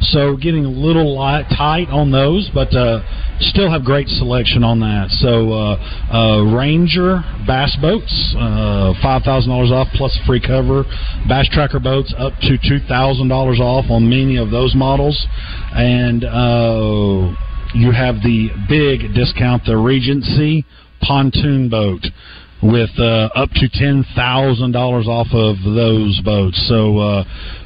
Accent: American